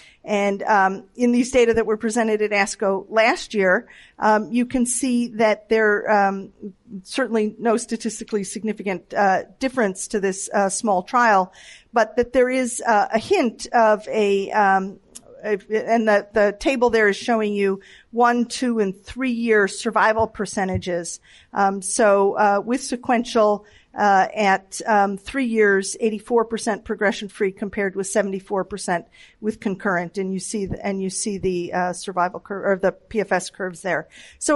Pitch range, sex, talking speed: 195-230 Hz, female, 160 wpm